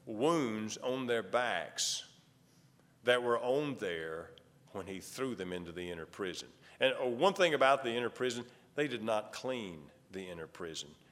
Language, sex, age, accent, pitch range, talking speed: English, male, 50-69, American, 110-160 Hz, 160 wpm